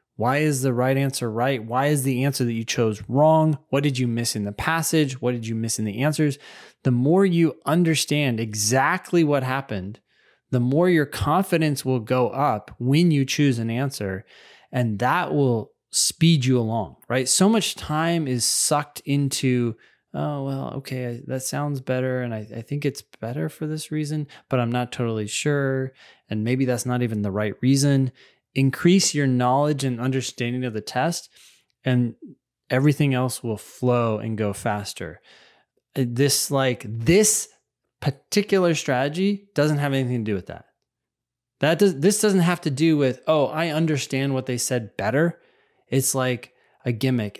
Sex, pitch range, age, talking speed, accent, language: male, 115-145 Hz, 20-39, 170 wpm, American, English